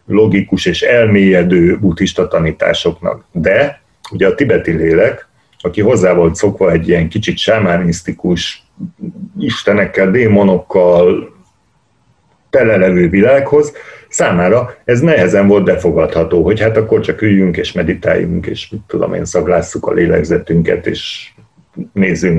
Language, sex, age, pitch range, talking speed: Hungarian, male, 60-79, 95-135 Hz, 115 wpm